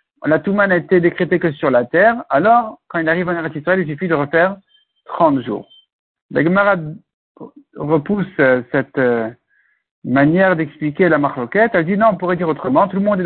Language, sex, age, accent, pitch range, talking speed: French, male, 60-79, French, 160-210 Hz, 180 wpm